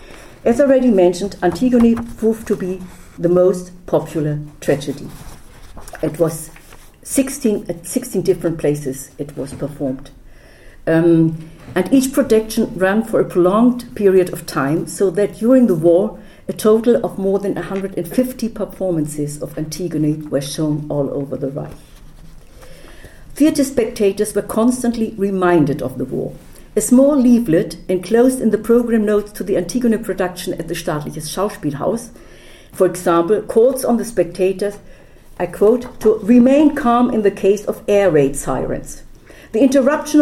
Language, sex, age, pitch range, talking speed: English, female, 60-79, 165-225 Hz, 140 wpm